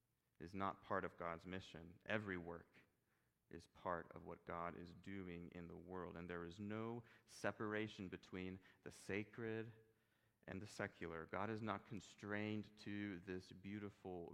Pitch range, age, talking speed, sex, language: 85-105 Hz, 30-49, 150 wpm, male, English